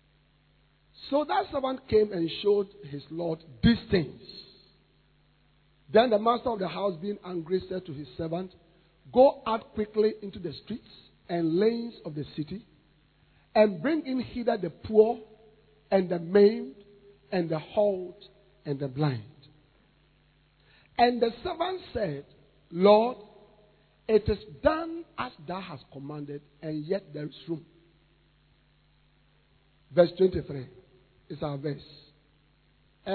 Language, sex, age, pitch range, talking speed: English, male, 50-69, 150-210 Hz, 125 wpm